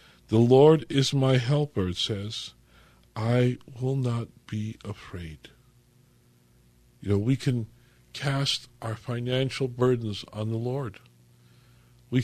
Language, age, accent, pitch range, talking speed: English, 50-69, American, 115-145 Hz, 120 wpm